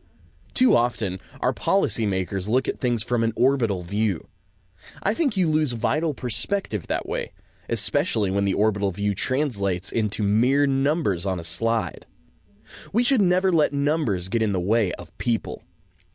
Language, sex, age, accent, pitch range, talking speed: English, male, 20-39, American, 100-140 Hz, 155 wpm